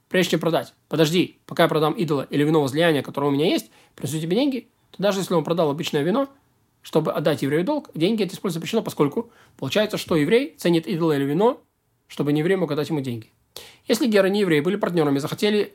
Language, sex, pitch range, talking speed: Russian, male, 150-200 Hz, 215 wpm